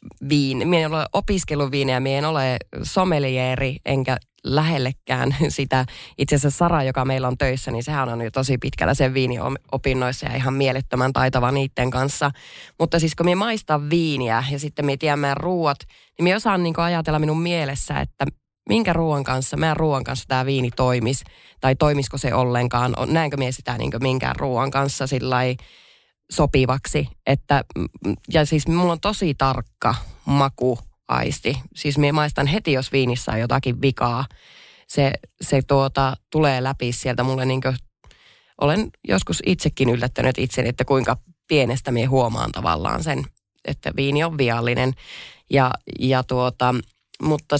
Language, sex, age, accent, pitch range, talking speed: Finnish, female, 20-39, native, 125-150 Hz, 155 wpm